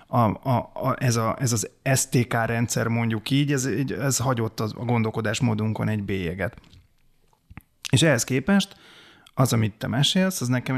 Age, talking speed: 30-49, 145 wpm